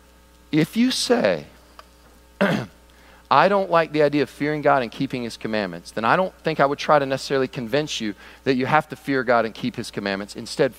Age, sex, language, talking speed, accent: 40-59, male, English, 205 wpm, American